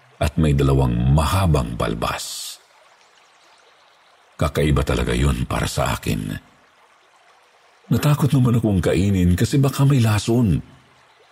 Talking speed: 100 wpm